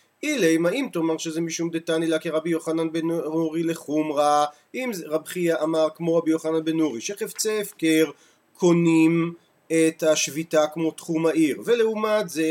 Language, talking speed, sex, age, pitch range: Hebrew, 150 wpm, male, 40-59, 155-195 Hz